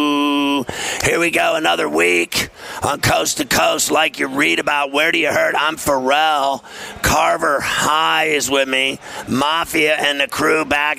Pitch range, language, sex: 130-155 Hz, English, male